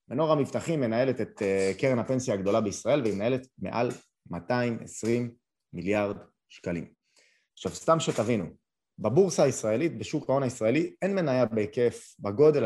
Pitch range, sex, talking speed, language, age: 105-135 Hz, male, 125 wpm, Hebrew, 30-49